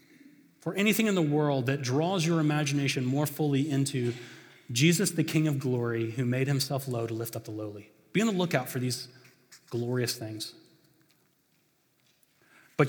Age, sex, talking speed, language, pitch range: 30-49, male, 165 wpm, English, 130-165 Hz